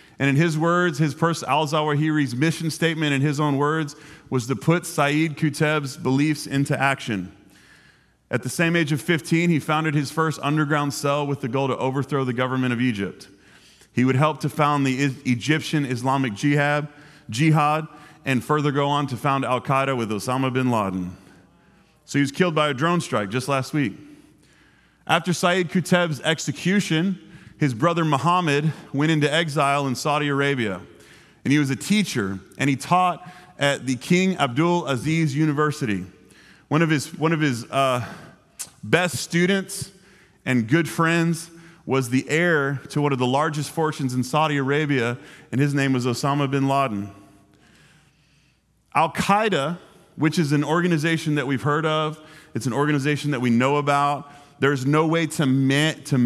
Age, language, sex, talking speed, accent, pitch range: 30-49, English, male, 165 wpm, American, 135-160 Hz